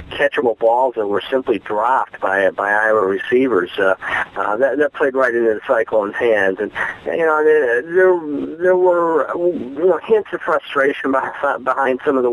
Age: 50-69